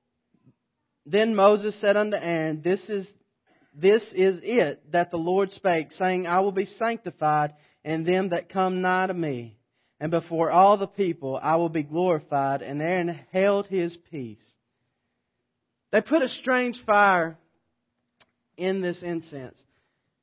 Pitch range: 155-200 Hz